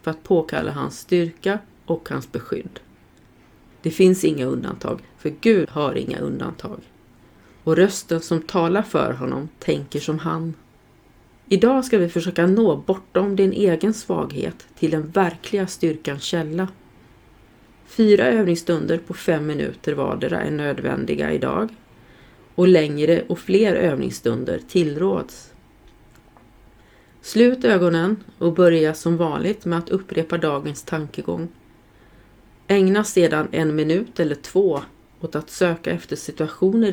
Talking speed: 125 wpm